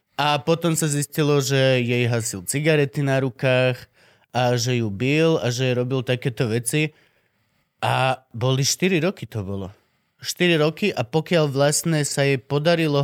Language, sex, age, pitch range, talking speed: Slovak, male, 30-49, 115-150 Hz, 150 wpm